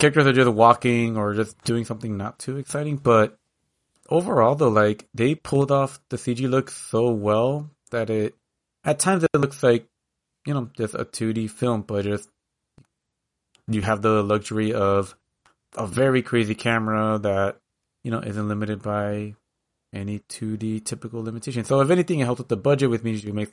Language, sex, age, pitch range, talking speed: English, male, 30-49, 105-120 Hz, 175 wpm